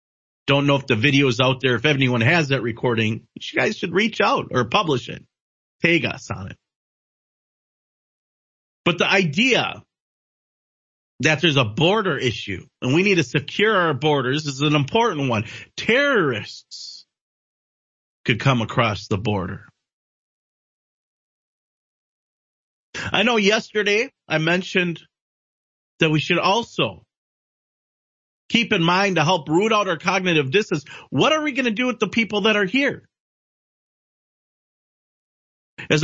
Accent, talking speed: American, 140 wpm